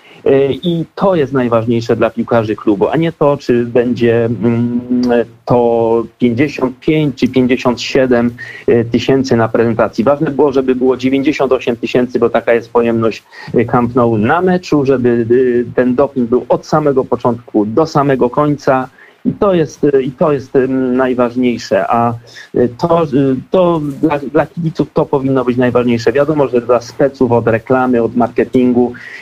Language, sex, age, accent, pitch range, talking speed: Polish, male, 40-59, native, 120-135 Hz, 140 wpm